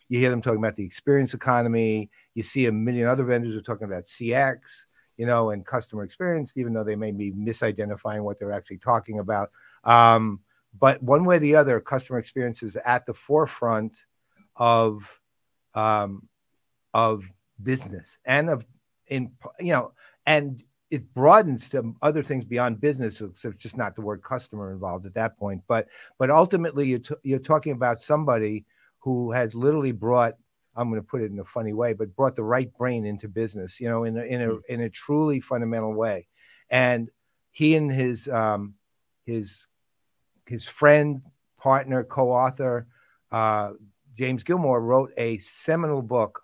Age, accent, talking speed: 50-69, American, 170 wpm